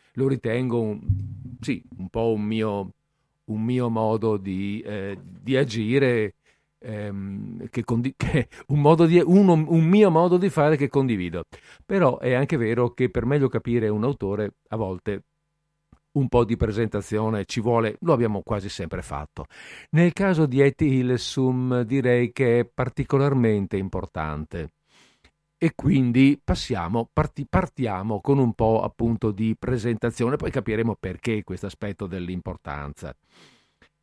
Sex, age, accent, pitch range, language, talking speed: male, 50-69, native, 105-140 Hz, Italian, 120 wpm